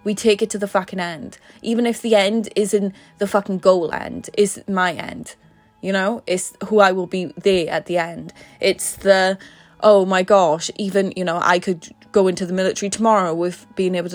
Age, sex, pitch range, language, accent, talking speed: 20-39, female, 175-205 Hz, English, British, 205 wpm